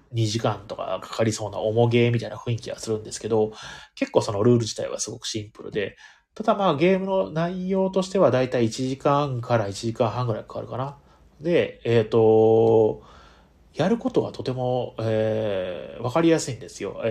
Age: 30-49